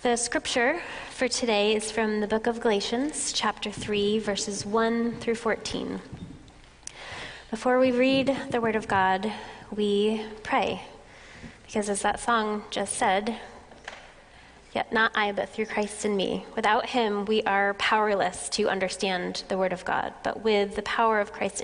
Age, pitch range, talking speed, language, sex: 20-39, 200-235 Hz, 155 wpm, English, female